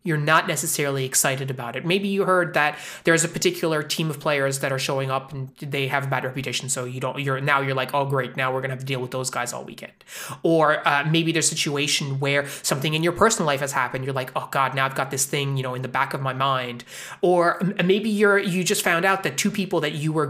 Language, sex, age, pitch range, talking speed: English, male, 20-39, 135-180 Hz, 265 wpm